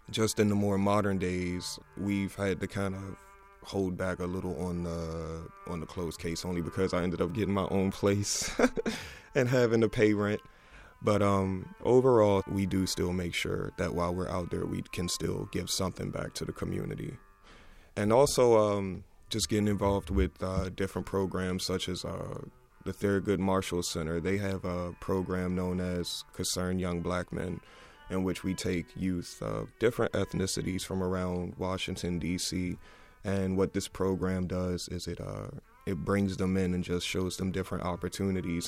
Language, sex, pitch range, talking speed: English, male, 90-100 Hz, 180 wpm